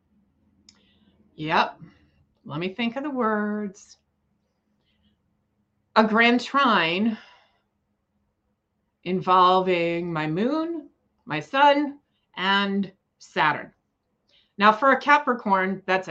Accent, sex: American, female